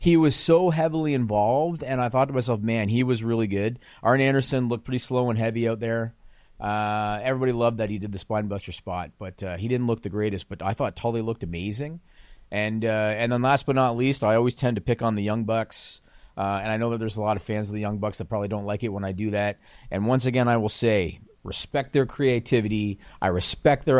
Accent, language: American, English